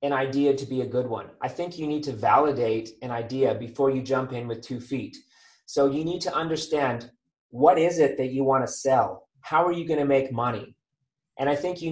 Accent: American